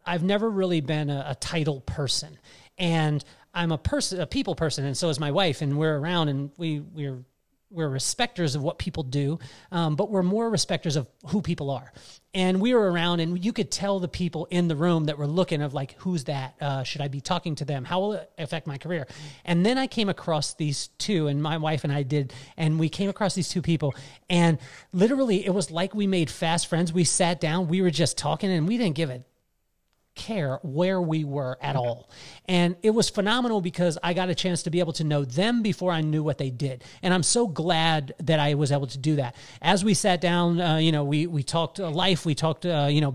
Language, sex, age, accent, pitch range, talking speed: English, male, 30-49, American, 145-180 Hz, 235 wpm